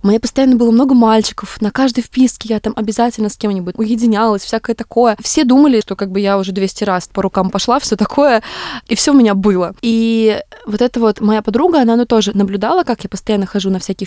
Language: Russian